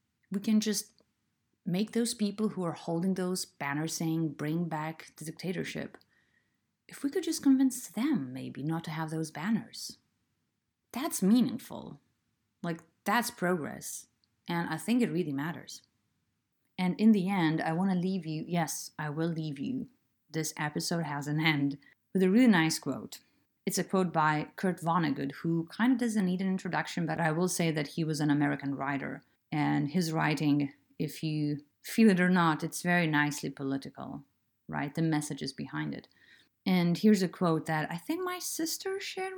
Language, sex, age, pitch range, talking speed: English, female, 30-49, 150-195 Hz, 175 wpm